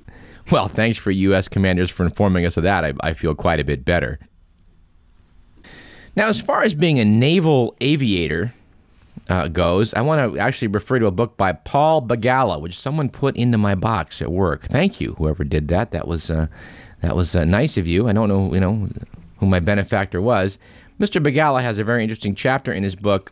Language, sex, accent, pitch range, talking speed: English, male, American, 95-135 Hz, 205 wpm